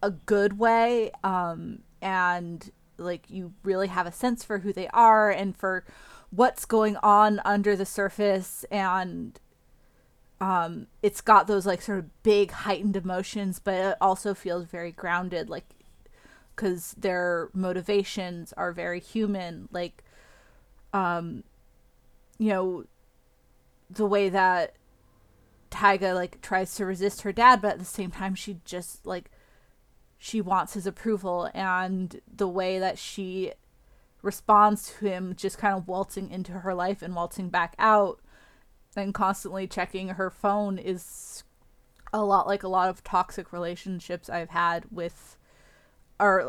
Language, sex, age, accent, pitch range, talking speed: English, female, 20-39, American, 180-205 Hz, 140 wpm